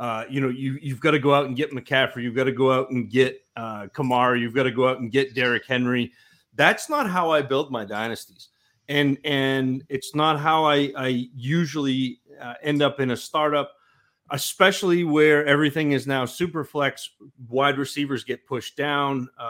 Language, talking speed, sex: English, 195 wpm, male